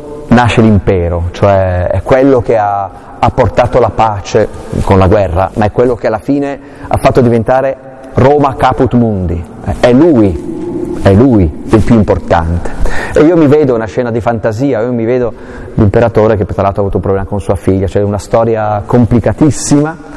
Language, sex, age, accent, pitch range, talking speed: Italian, male, 30-49, native, 105-130 Hz, 175 wpm